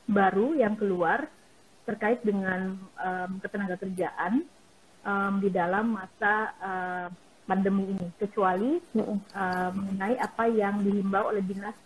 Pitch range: 180-210 Hz